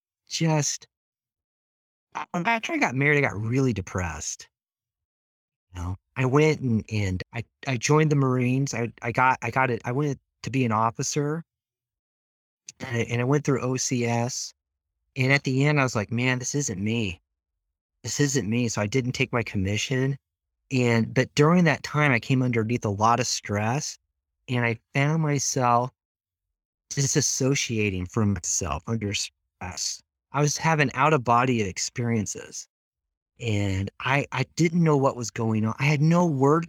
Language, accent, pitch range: English, American, 100-140 Hz